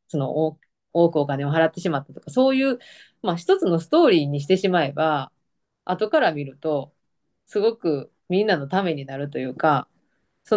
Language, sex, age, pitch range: Japanese, female, 20-39, 150-220 Hz